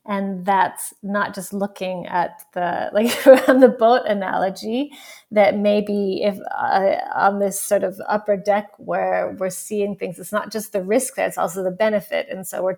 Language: English